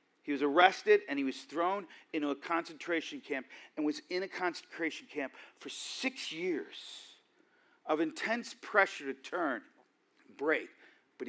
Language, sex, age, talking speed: English, male, 50-69, 145 wpm